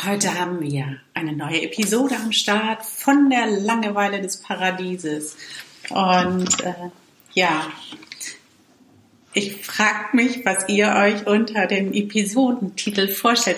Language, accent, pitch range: German, German, 175-215 Hz